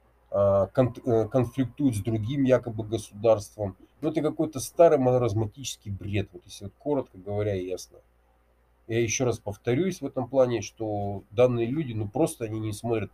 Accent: native